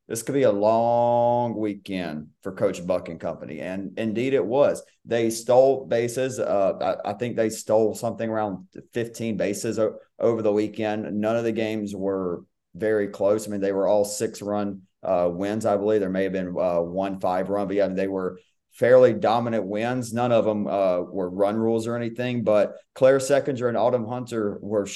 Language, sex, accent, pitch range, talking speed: English, male, American, 100-120 Hz, 185 wpm